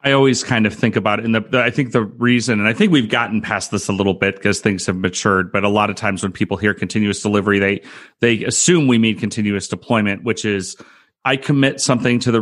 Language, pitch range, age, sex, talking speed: English, 105-130 Hz, 30-49, male, 240 wpm